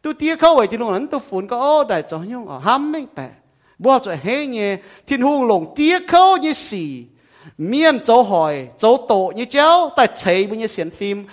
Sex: male